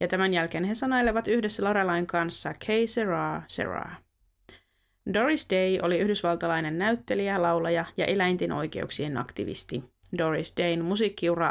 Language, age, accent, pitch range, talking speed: Finnish, 20-39, native, 170-205 Hz, 125 wpm